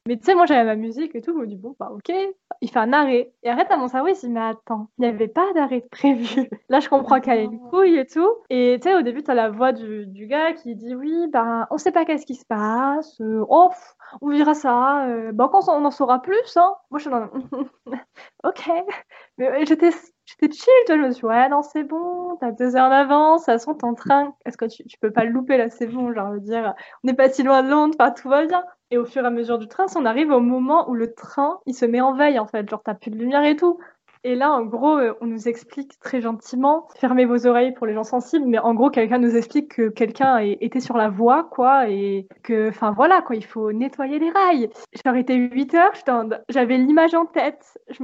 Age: 10-29